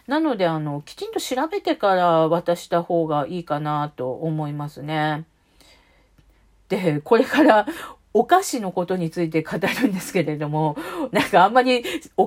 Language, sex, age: Japanese, female, 40-59